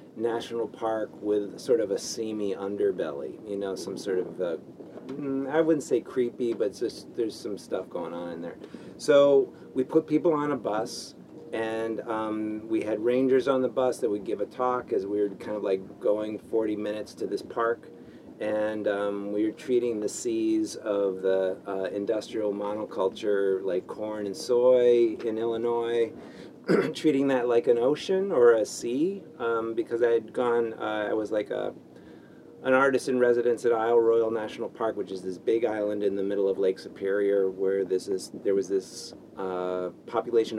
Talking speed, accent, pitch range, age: 180 wpm, American, 100-130 Hz, 40-59